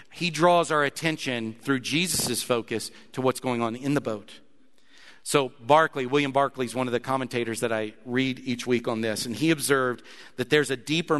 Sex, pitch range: male, 115-140 Hz